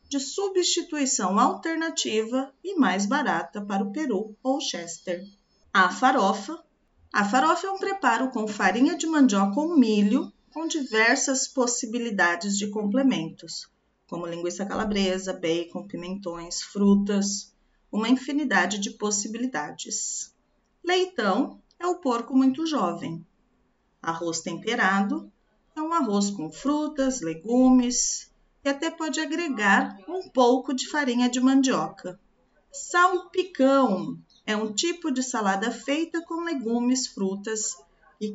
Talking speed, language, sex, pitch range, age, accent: 115 wpm, Portuguese, female, 200-290 Hz, 40-59, Brazilian